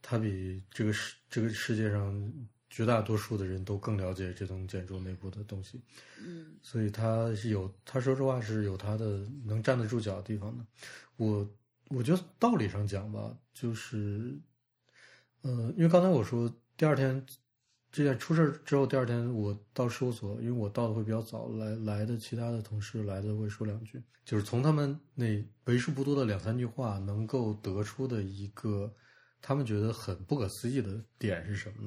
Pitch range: 105-125 Hz